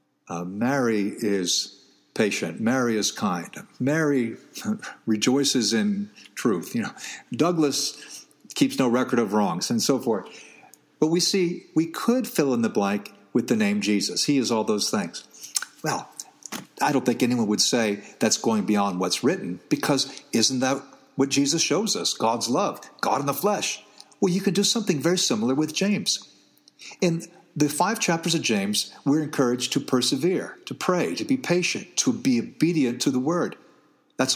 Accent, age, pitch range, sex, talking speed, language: American, 50-69, 130-195 Hz, male, 170 wpm, English